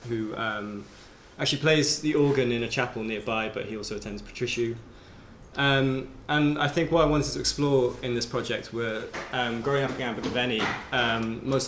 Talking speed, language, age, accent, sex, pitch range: 180 wpm, English, 20-39, British, male, 105-125 Hz